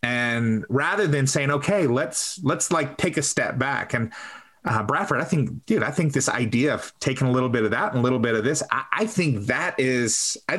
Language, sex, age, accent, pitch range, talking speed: English, male, 30-49, American, 125-150 Hz, 230 wpm